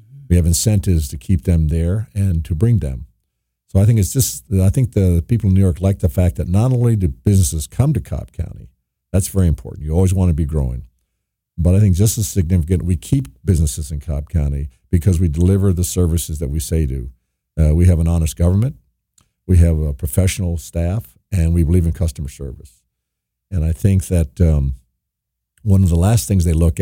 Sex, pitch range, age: male, 80-95 Hz, 50-69